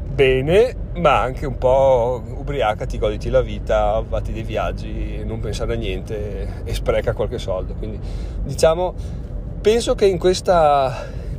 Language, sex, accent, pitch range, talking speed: Italian, male, native, 105-150 Hz, 155 wpm